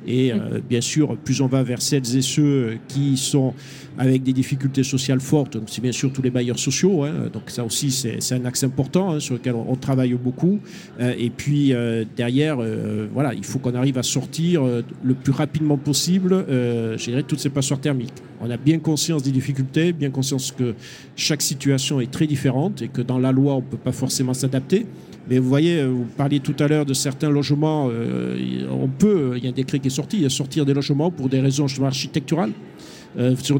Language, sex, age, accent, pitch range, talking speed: French, male, 50-69, French, 130-150 Hz, 215 wpm